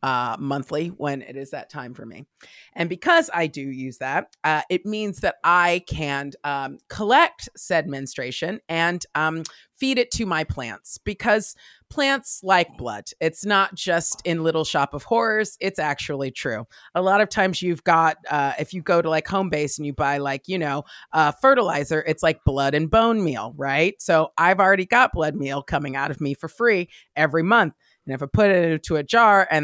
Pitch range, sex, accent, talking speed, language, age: 145-190 Hz, female, American, 200 wpm, English, 30-49